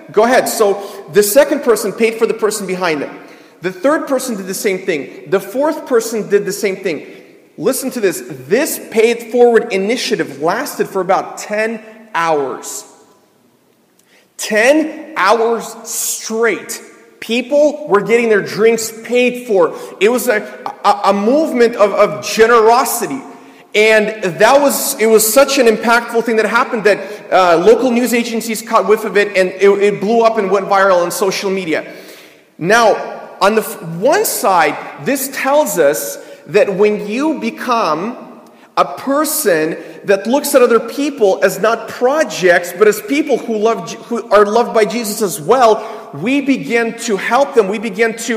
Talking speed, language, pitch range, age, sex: 160 wpm, English, 205-240 Hz, 40-59, male